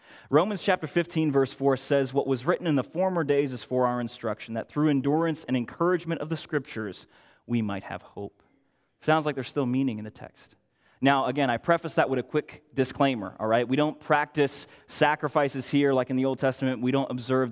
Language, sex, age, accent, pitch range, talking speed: English, male, 20-39, American, 120-150 Hz, 210 wpm